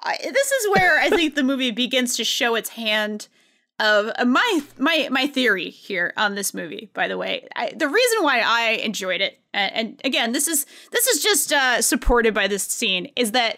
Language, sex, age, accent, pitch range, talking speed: English, female, 20-39, American, 210-300 Hz, 210 wpm